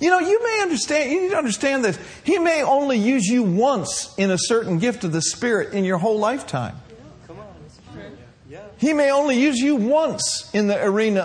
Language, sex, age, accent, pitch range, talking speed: English, male, 50-69, American, 160-255 Hz, 205 wpm